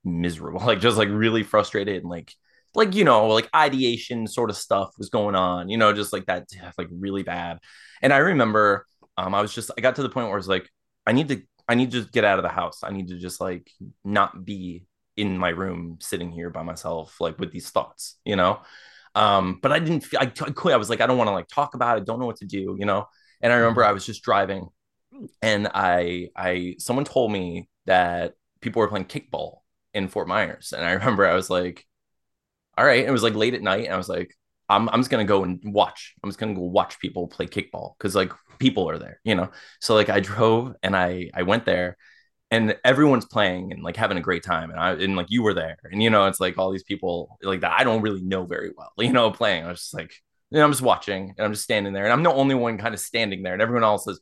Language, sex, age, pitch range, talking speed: English, male, 20-39, 90-120 Hz, 255 wpm